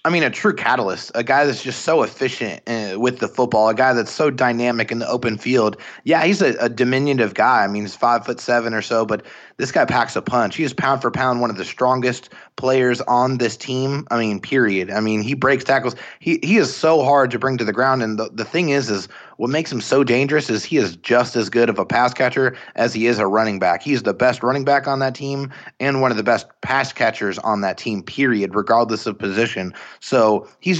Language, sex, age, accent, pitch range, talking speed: English, male, 30-49, American, 115-135 Hz, 245 wpm